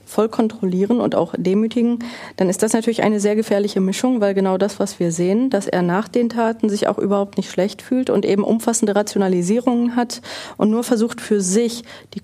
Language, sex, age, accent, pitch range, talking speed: German, female, 30-49, German, 190-235 Hz, 200 wpm